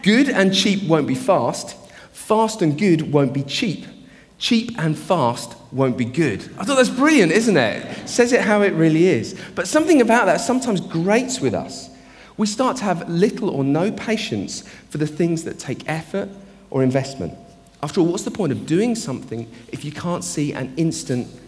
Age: 40-59